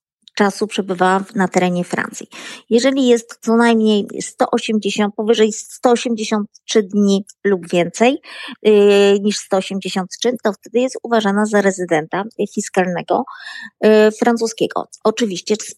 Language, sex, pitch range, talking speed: Polish, female, 195-240 Hz, 100 wpm